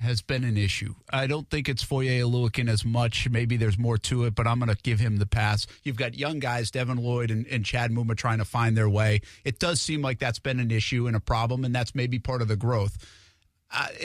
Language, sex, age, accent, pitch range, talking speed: English, male, 50-69, American, 115-170 Hz, 250 wpm